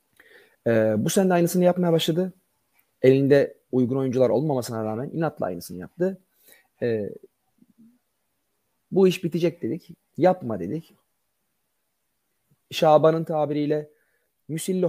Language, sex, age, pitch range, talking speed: Turkish, male, 30-49, 125-175 Hz, 95 wpm